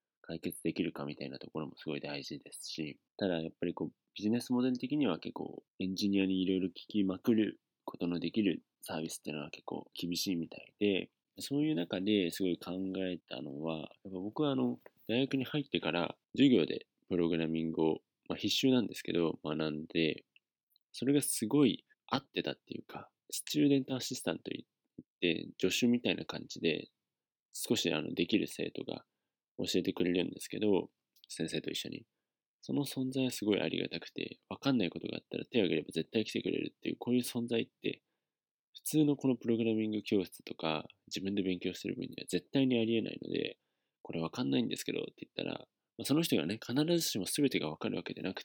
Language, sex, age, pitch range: Japanese, male, 20-39, 90-130 Hz